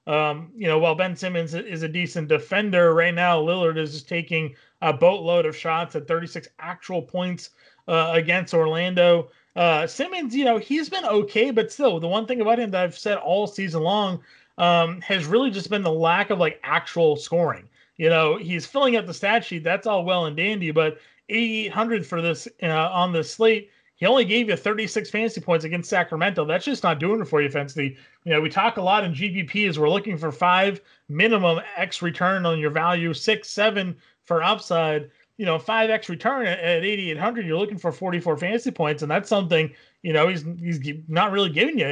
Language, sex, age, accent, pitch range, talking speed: English, male, 30-49, American, 165-210 Hz, 205 wpm